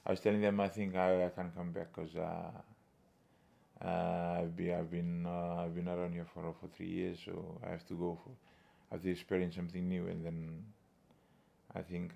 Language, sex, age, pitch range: English, male, 20-39, 85-95 Hz